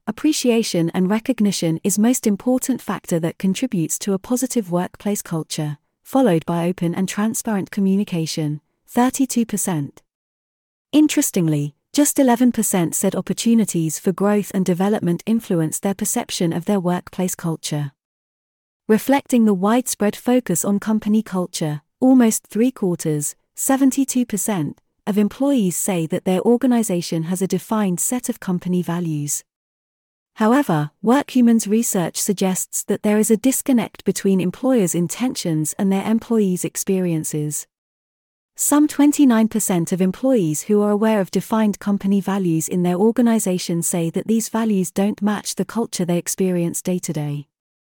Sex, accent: female, British